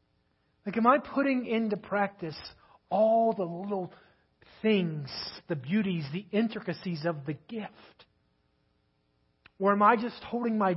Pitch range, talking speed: 185-235 Hz, 130 wpm